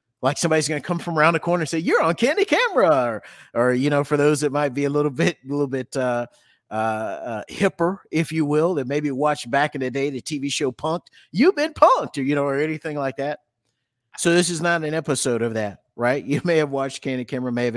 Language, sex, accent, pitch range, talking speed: English, male, American, 120-150 Hz, 255 wpm